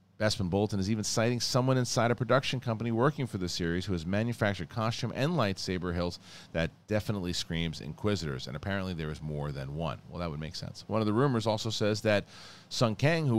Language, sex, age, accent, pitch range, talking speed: English, male, 40-59, American, 85-110 Hz, 210 wpm